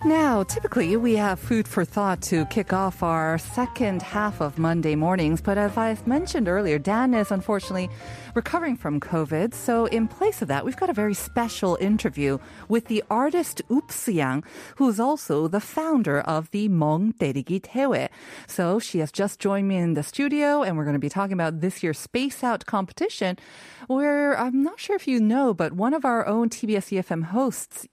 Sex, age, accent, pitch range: female, 30-49, American, 170-245 Hz